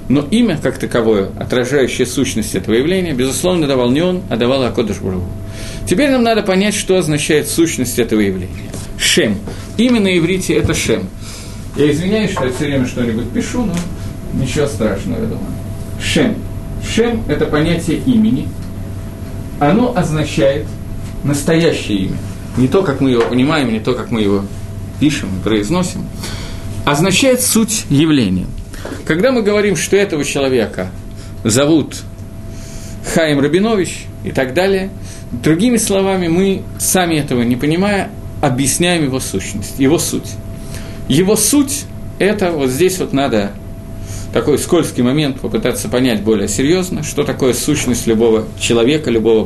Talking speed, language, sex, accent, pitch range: 140 wpm, Russian, male, native, 105-160 Hz